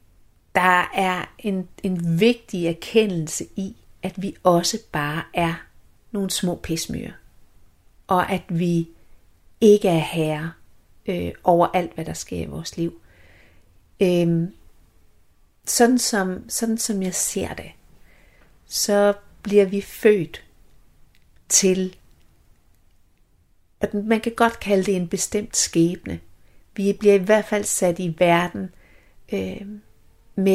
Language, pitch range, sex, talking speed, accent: Danish, 155-205 Hz, female, 120 wpm, native